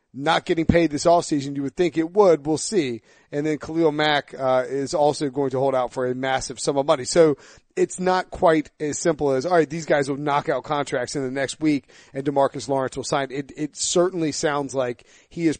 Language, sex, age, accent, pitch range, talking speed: English, male, 30-49, American, 135-165 Hz, 235 wpm